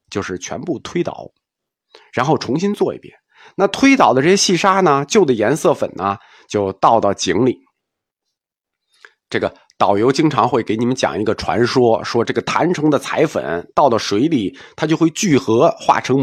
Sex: male